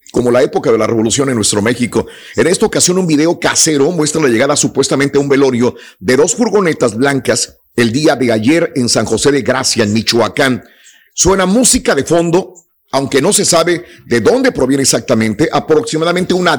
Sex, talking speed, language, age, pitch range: male, 185 wpm, Spanish, 50-69, 120-165 Hz